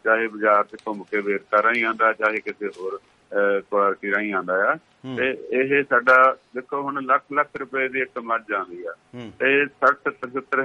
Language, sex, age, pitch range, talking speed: Punjabi, male, 50-69, 105-125 Hz, 170 wpm